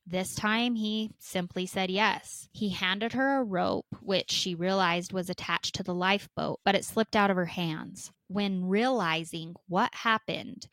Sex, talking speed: female, 170 wpm